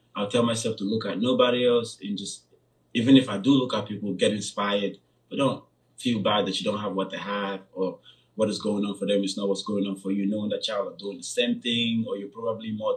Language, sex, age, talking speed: English, male, 20-39, 260 wpm